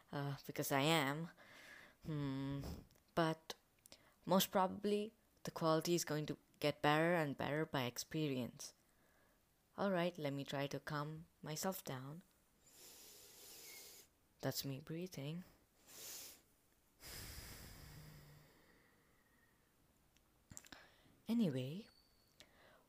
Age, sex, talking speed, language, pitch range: 20-39, female, 85 wpm, English, 145-190 Hz